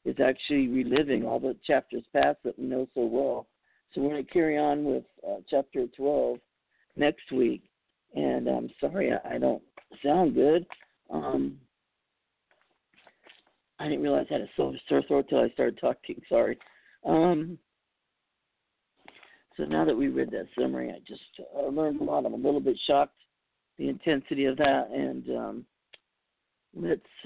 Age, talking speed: 50-69, 160 wpm